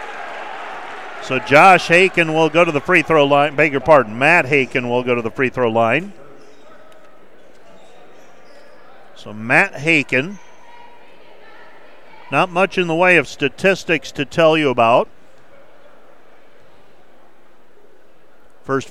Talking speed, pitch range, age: 115 wpm, 140-180 Hz, 50-69